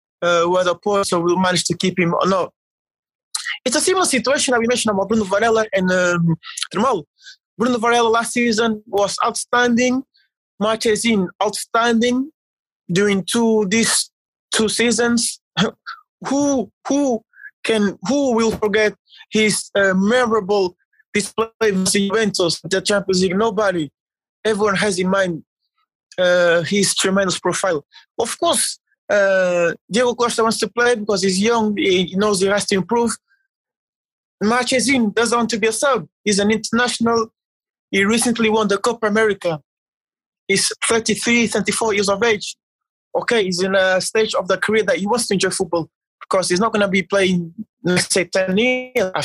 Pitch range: 190-235 Hz